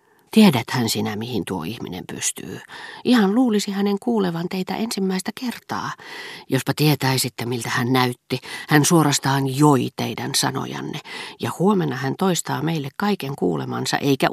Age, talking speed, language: 40-59, 130 wpm, Finnish